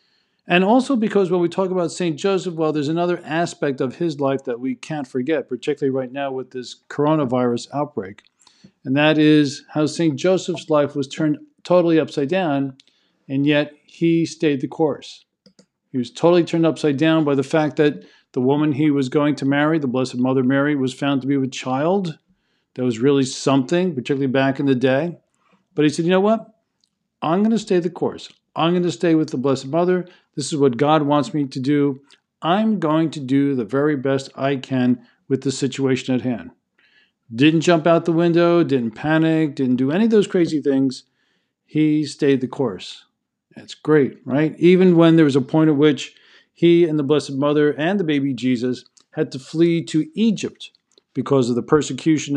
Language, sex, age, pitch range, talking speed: English, male, 50-69, 135-170 Hz, 195 wpm